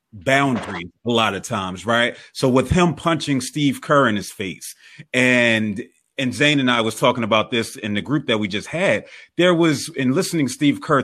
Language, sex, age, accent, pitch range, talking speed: English, male, 30-49, American, 115-145 Hz, 200 wpm